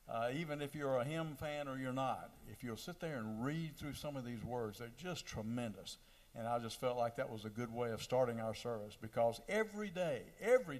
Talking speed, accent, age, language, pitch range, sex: 235 wpm, American, 60-79, English, 110-145 Hz, male